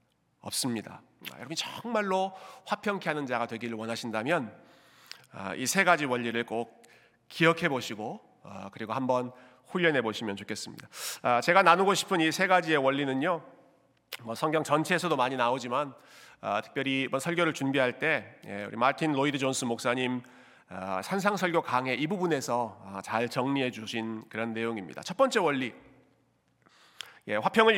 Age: 40-59